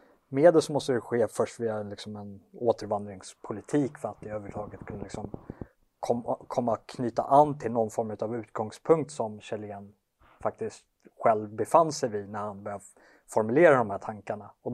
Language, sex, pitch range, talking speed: Swedish, male, 105-125 Hz, 165 wpm